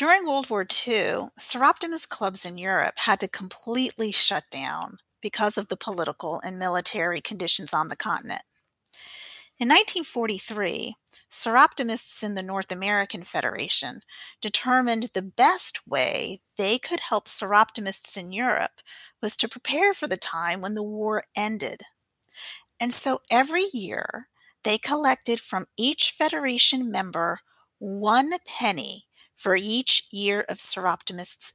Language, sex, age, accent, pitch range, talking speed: English, female, 40-59, American, 195-255 Hz, 130 wpm